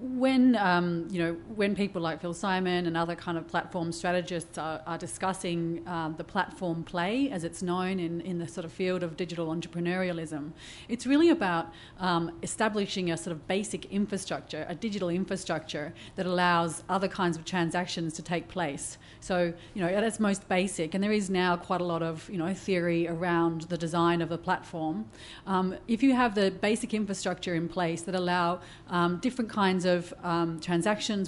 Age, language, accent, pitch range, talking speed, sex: 30-49, English, Australian, 170-195 Hz, 190 wpm, female